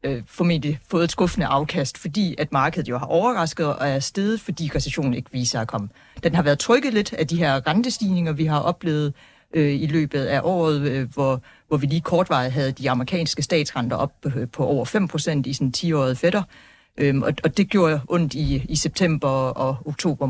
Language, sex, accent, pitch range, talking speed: Danish, female, native, 140-175 Hz, 200 wpm